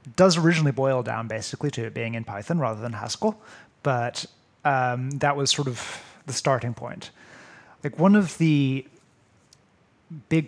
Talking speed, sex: 155 wpm, male